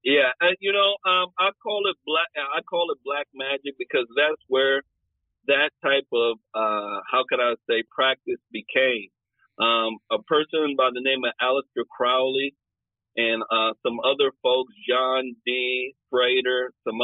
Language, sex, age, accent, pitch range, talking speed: English, male, 40-59, American, 115-155 Hz, 160 wpm